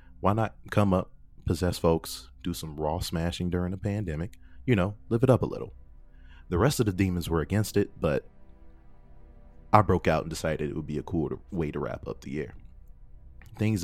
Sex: male